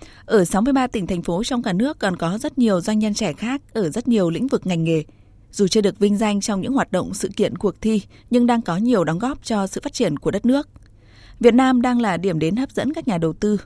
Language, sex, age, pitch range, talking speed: Vietnamese, female, 20-39, 180-235 Hz, 270 wpm